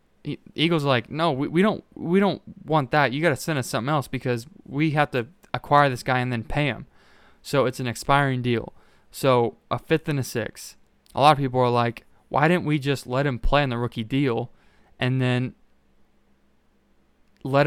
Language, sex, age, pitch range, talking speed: English, male, 20-39, 120-150 Hz, 200 wpm